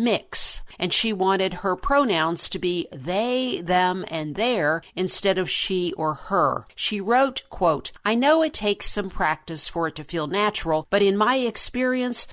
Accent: American